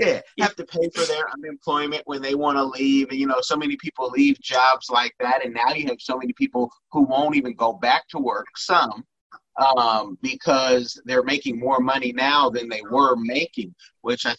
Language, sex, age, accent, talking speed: English, male, 30-49, American, 215 wpm